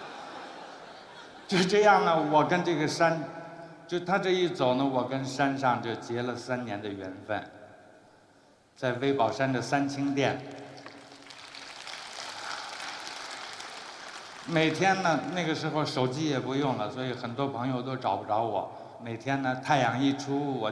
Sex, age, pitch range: male, 60-79, 120-155 Hz